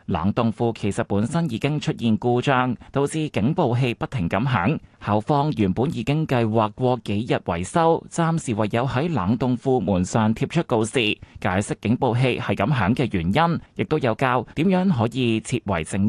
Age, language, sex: 20-39, Chinese, male